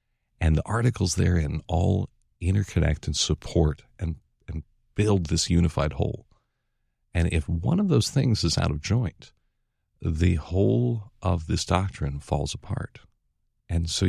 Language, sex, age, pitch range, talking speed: English, male, 50-69, 80-110 Hz, 140 wpm